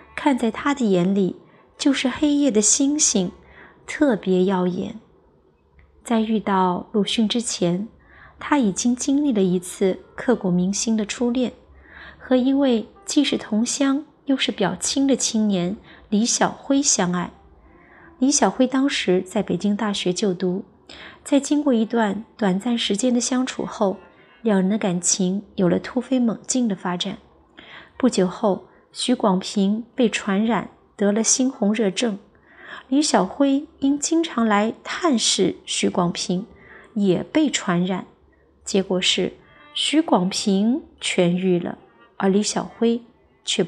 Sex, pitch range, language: female, 190-250 Hz, Chinese